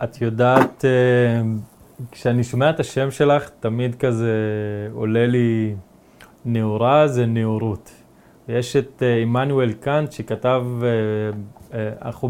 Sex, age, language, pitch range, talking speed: male, 20-39, English, 115-140 Hz, 95 wpm